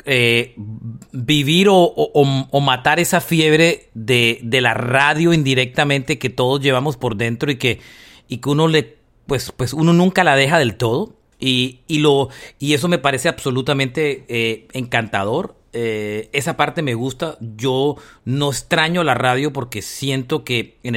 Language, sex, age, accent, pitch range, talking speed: Spanish, male, 40-59, Mexican, 120-155 Hz, 160 wpm